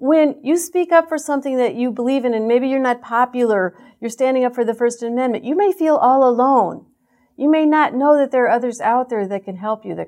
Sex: female